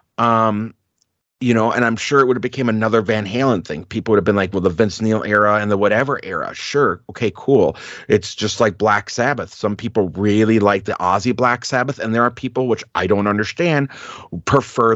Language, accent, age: English, American, 30-49